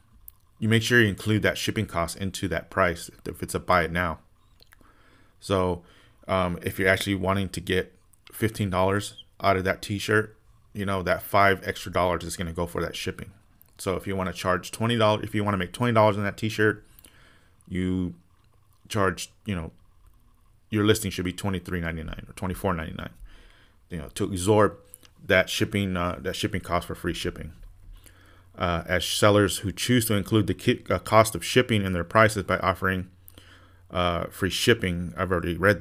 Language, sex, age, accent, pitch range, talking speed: English, male, 30-49, American, 90-105 Hz, 170 wpm